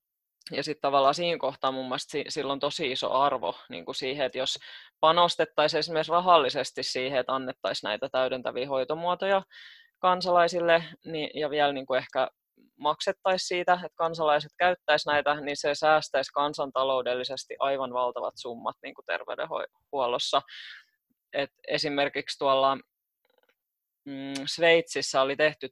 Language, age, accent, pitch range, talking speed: Finnish, 20-39, native, 135-165 Hz, 125 wpm